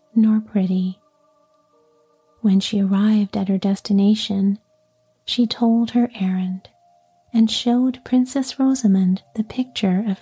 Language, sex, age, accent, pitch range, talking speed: English, female, 40-59, American, 190-225 Hz, 110 wpm